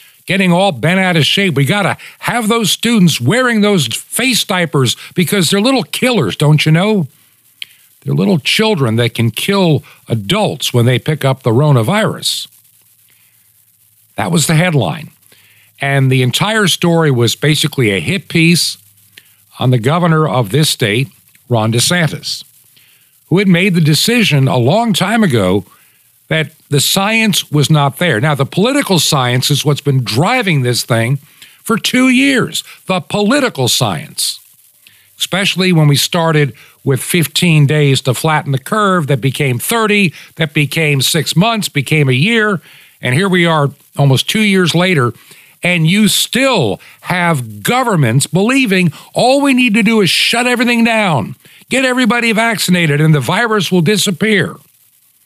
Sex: male